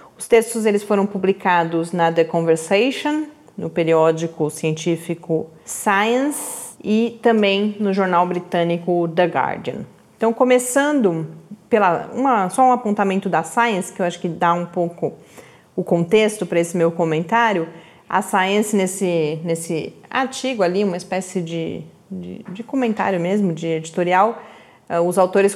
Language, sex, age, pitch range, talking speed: Portuguese, female, 30-49, 170-225 Hz, 135 wpm